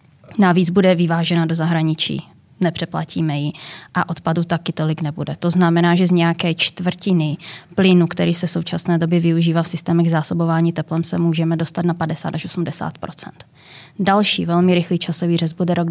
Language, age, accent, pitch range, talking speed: Czech, 20-39, native, 165-175 Hz, 160 wpm